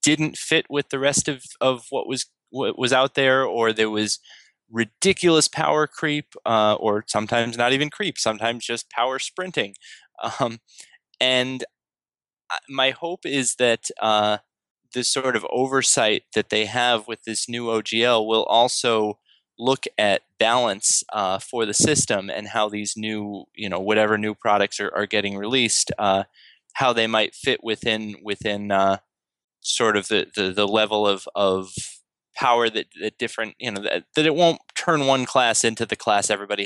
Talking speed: 170 wpm